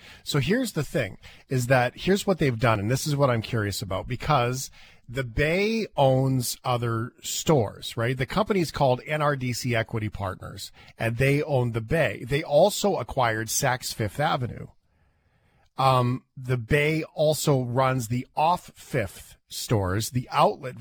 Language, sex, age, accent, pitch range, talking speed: English, male, 40-59, American, 120-150 Hz, 155 wpm